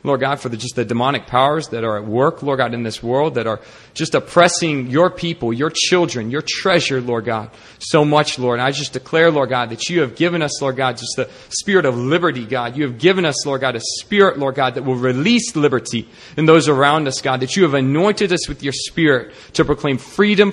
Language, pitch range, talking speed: English, 120-160 Hz, 235 wpm